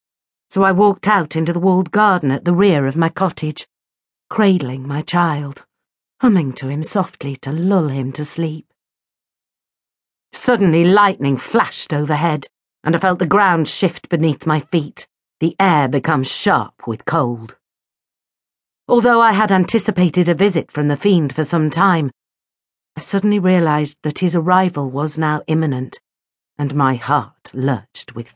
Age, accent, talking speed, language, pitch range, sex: 50-69, British, 150 wpm, English, 140-195 Hz, female